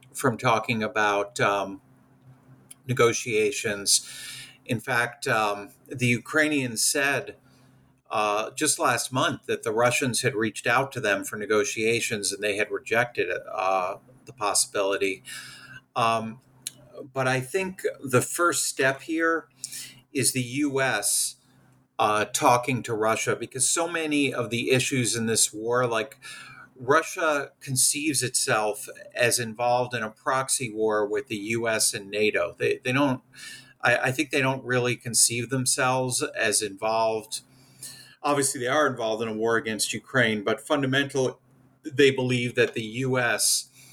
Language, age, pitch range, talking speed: English, 50-69, 115-135 Hz, 135 wpm